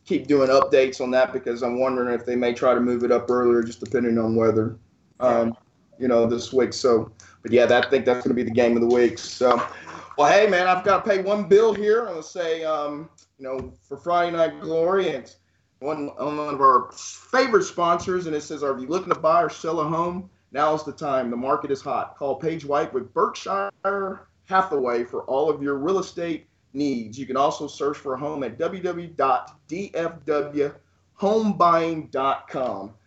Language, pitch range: English, 130-190 Hz